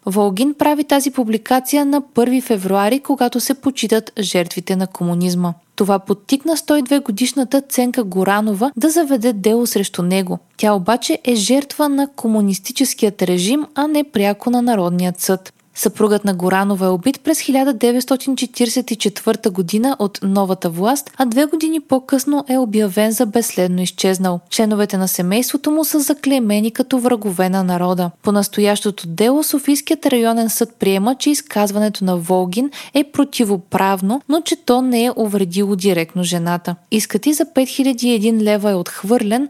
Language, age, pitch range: Bulgarian, 20-39, 195-265 Hz